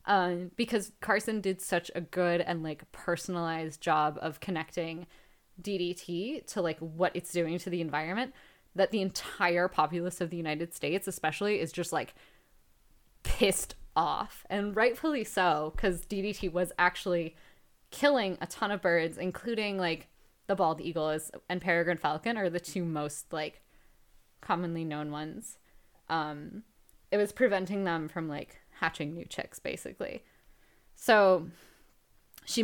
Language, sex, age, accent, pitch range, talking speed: English, female, 10-29, American, 165-195 Hz, 140 wpm